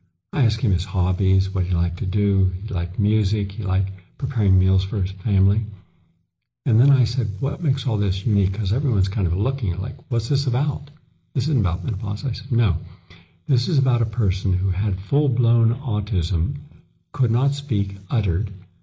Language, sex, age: English, male, 60-79